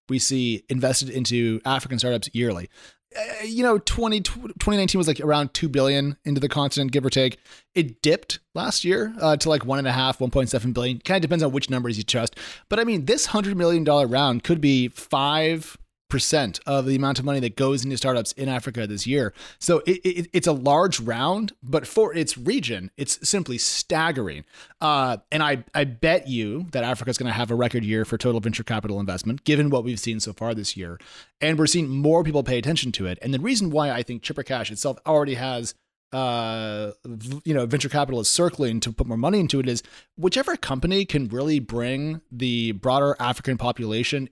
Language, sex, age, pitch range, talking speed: English, male, 30-49, 120-155 Hz, 200 wpm